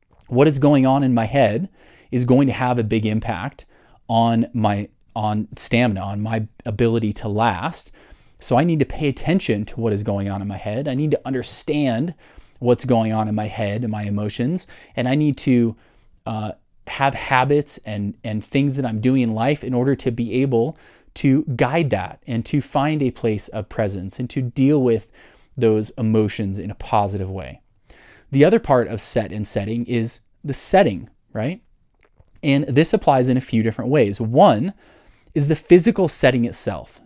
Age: 30-49